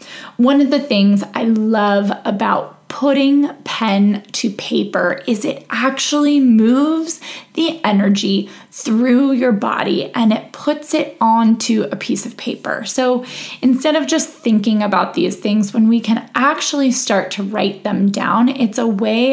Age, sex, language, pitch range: 20-39, female, English, 205-285 Hz